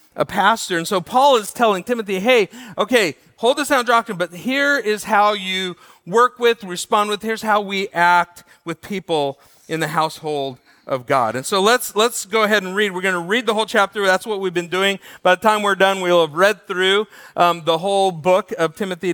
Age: 40-59